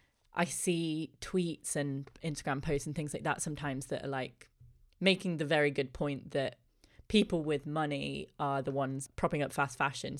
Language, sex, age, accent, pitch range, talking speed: English, female, 20-39, British, 140-155 Hz, 175 wpm